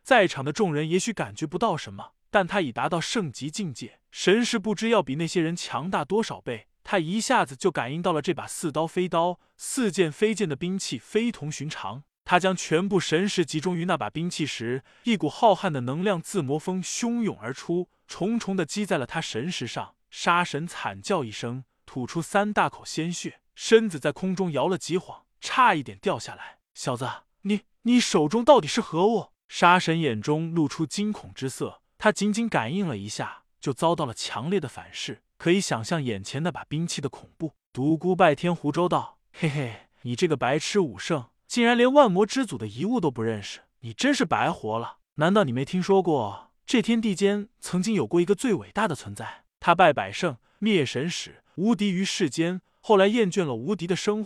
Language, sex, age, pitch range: Chinese, male, 20-39, 145-200 Hz